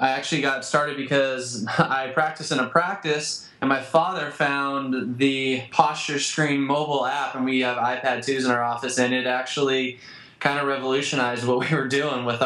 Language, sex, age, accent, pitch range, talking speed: English, male, 20-39, American, 125-145 Hz, 185 wpm